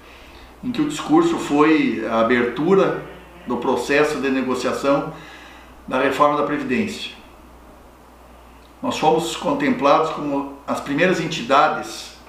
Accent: Brazilian